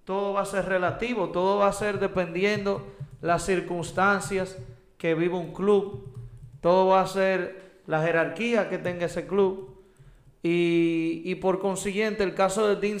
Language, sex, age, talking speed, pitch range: Spanish, male, 30-49, 155 wpm, 160-195 Hz